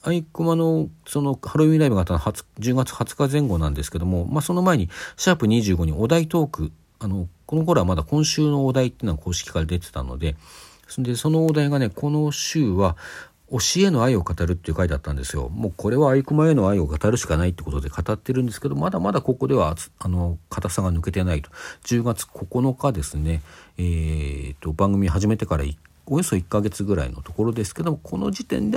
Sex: male